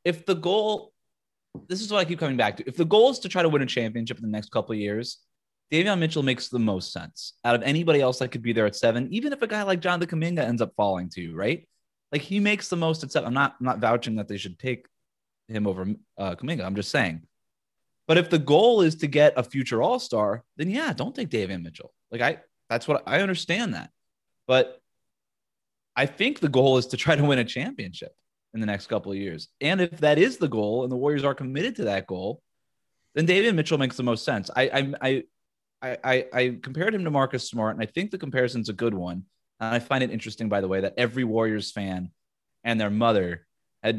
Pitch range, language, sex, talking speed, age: 110-150 Hz, English, male, 240 wpm, 20-39